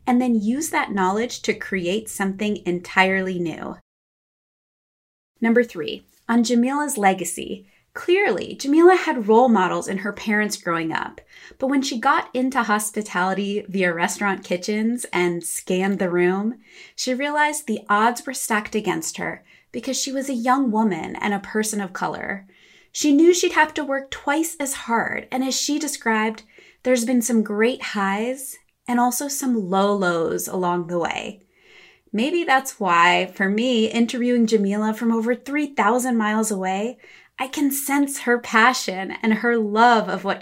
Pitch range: 200-265 Hz